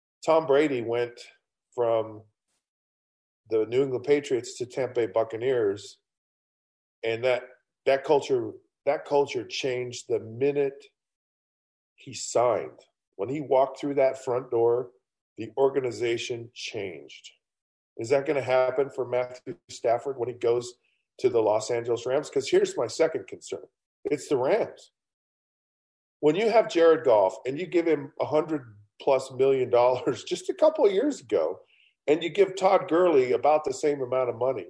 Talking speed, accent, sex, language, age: 150 wpm, American, male, English, 40-59